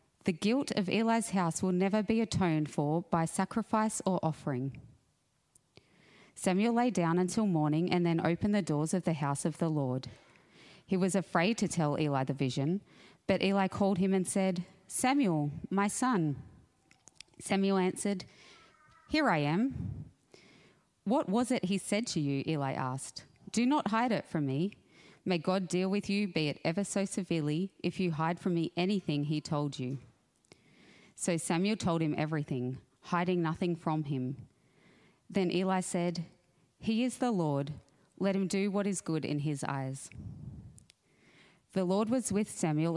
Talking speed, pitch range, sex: 160 wpm, 150-195 Hz, female